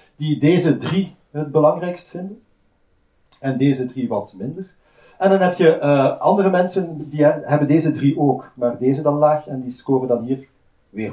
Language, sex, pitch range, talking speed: Dutch, male, 125-155 Hz, 180 wpm